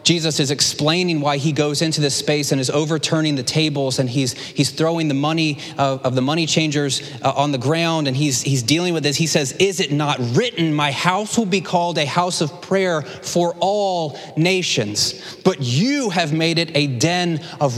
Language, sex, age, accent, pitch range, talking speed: English, male, 30-49, American, 150-195 Hz, 205 wpm